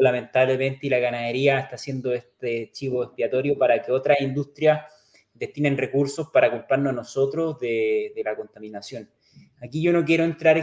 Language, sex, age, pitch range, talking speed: Spanish, male, 30-49, 130-155 Hz, 150 wpm